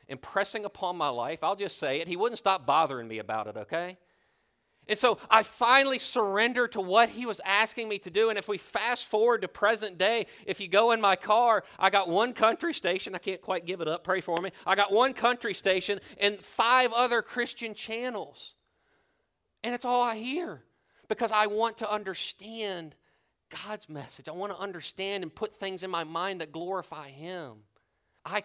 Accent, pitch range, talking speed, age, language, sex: American, 165-225 Hz, 195 wpm, 40-59, English, male